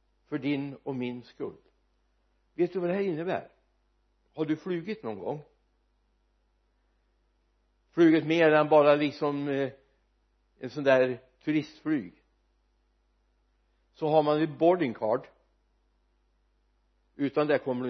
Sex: male